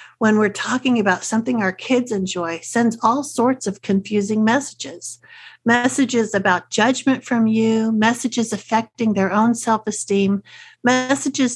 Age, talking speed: 50-69, 130 wpm